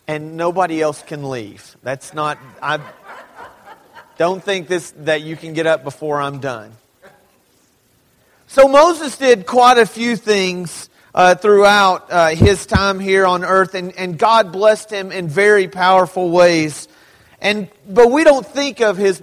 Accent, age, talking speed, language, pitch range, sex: American, 40-59, 155 wpm, English, 180-220 Hz, male